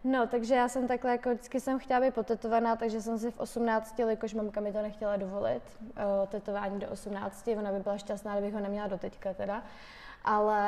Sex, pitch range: female, 210-230 Hz